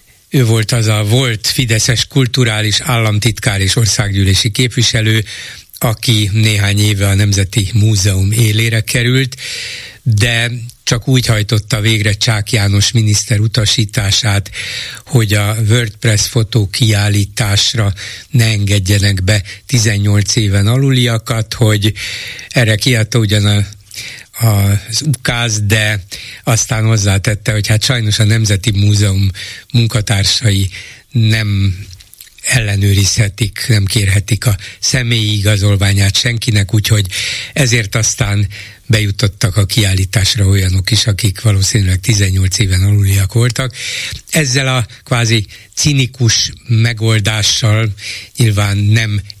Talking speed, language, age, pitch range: 100 wpm, Hungarian, 60-79, 100-120 Hz